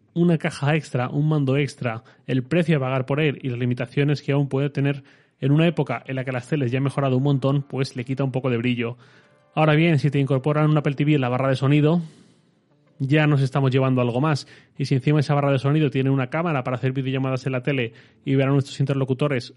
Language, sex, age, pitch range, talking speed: Spanish, male, 30-49, 130-145 Hz, 240 wpm